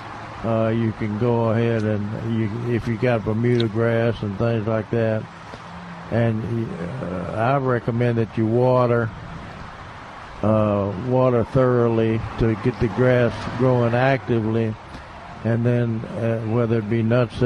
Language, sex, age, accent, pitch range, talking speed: English, male, 60-79, American, 110-120 Hz, 135 wpm